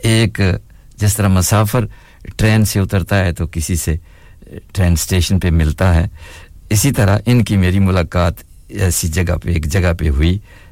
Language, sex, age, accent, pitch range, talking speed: English, male, 60-79, Indian, 80-100 Hz, 160 wpm